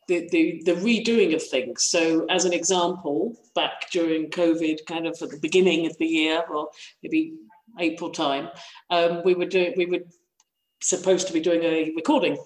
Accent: British